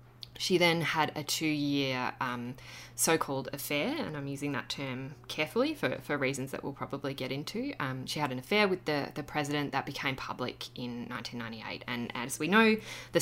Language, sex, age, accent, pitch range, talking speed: English, female, 10-29, Australian, 120-145 Hz, 185 wpm